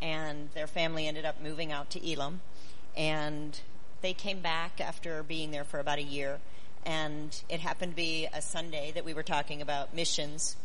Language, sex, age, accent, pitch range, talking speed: English, female, 40-59, American, 150-175 Hz, 185 wpm